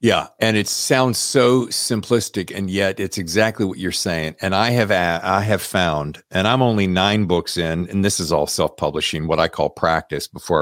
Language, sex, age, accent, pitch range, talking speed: English, male, 50-69, American, 85-120 Hz, 200 wpm